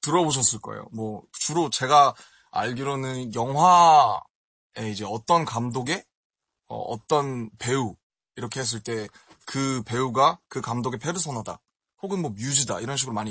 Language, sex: Korean, male